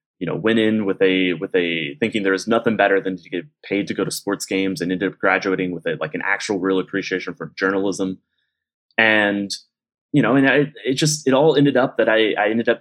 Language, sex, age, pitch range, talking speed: English, male, 20-39, 95-110 Hz, 230 wpm